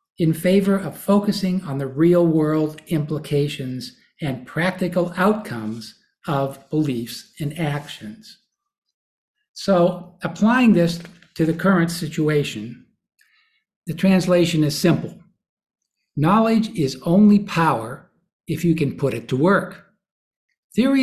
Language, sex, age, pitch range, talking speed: English, male, 60-79, 145-195 Hz, 110 wpm